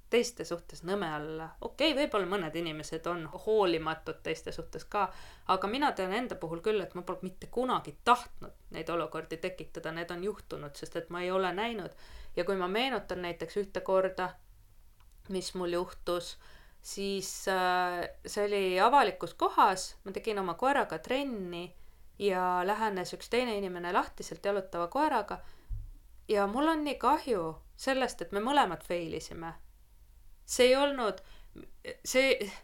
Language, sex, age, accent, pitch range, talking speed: English, female, 20-39, Finnish, 165-215 Hz, 145 wpm